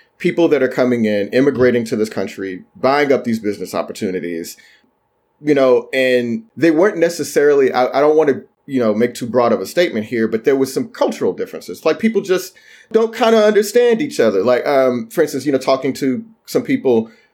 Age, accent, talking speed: 30-49, American, 205 wpm